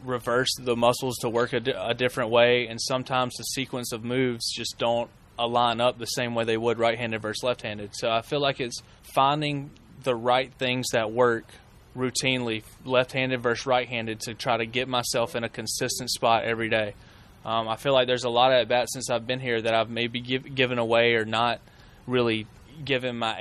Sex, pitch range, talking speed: male, 115-125 Hz, 200 wpm